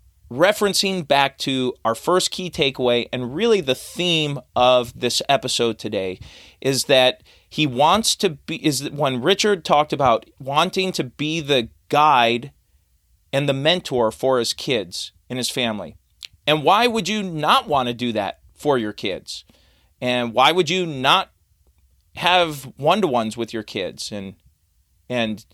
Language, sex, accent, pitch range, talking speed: English, male, American, 120-175 Hz, 155 wpm